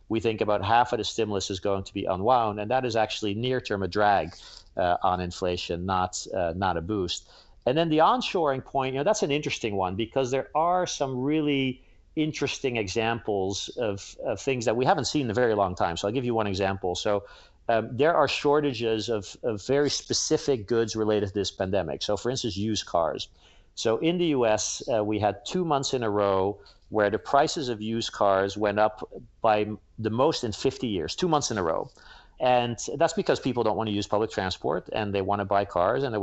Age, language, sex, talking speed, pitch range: 50-69, English, male, 220 wpm, 100-130 Hz